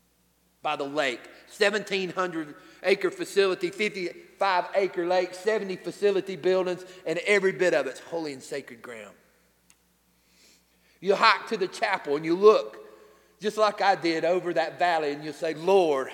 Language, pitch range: English, 115-185 Hz